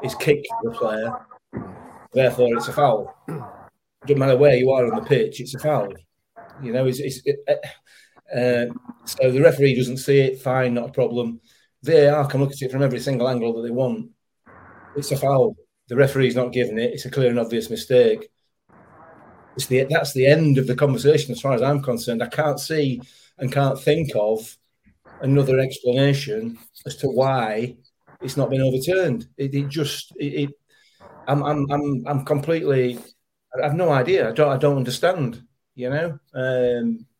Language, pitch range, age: English, 125-140 Hz, 30-49